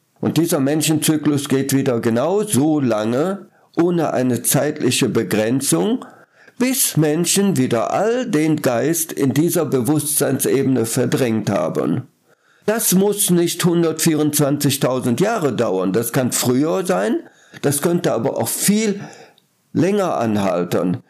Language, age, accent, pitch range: German, 50-69, German, 120-165 Hz